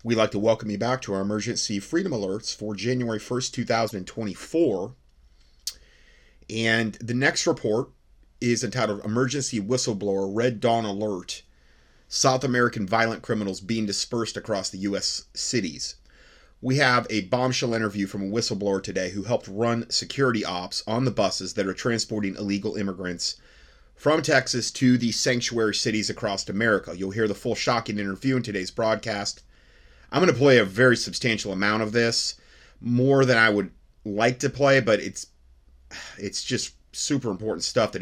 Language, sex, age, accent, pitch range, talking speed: English, male, 30-49, American, 90-120 Hz, 160 wpm